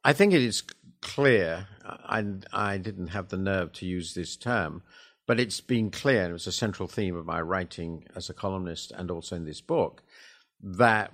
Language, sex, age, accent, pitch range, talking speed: English, male, 50-69, British, 85-105 Hz, 195 wpm